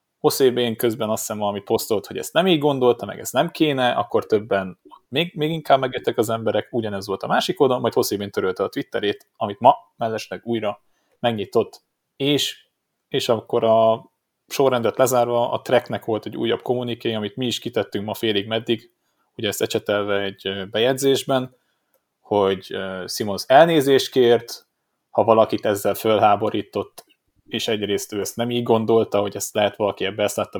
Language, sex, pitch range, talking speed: Hungarian, male, 100-125 Hz, 165 wpm